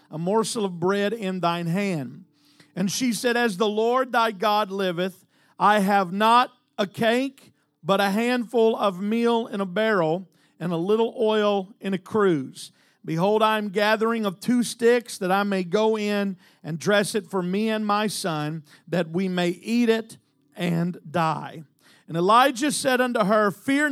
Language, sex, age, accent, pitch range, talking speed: English, male, 50-69, American, 185-230 Hz, 175 wpm